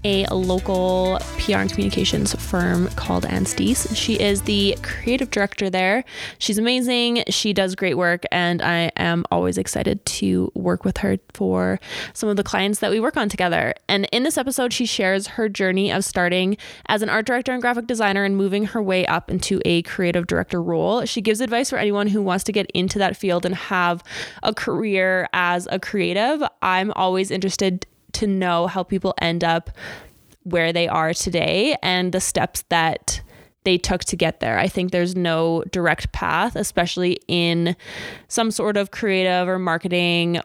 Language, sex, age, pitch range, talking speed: English, female, 20-39, 170-205 Hz, 180 wpm